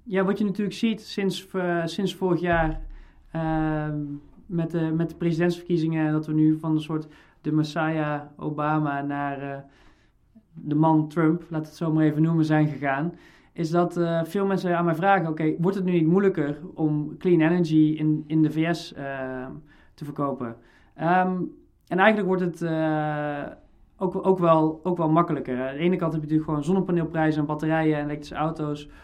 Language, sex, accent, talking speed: Dutch, male, Dutch, 170 wpm